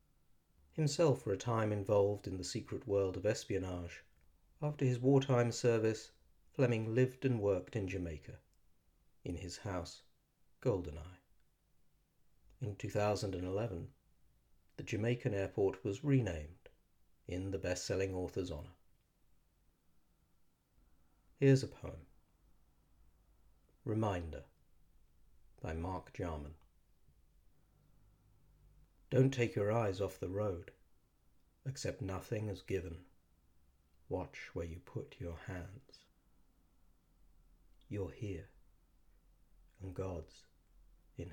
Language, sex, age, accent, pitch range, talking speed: English, male, 50-69, British, 80-100 Hz, 95 wpm